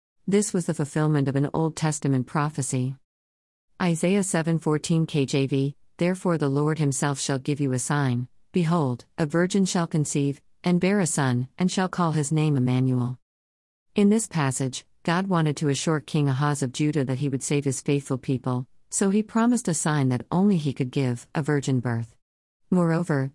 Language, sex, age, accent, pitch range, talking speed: English, female, 50-69, American, 130-170 Hz, 175 wpm